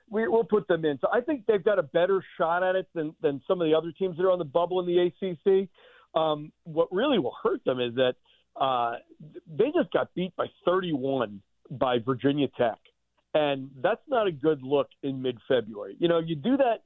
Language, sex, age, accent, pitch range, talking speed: English, male, 50-69, American, 140-180 Hz, 215 wpm